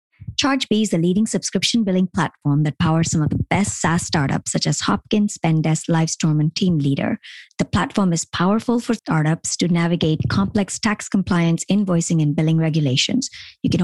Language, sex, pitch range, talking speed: English, male, 160-205 Hz, 175 wpm